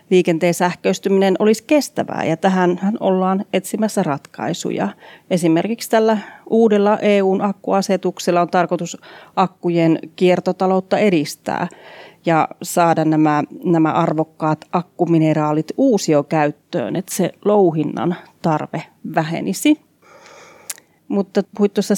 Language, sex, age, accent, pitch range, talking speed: Finnish, female, 30-49, native, 160-200 Hz, 85 wpm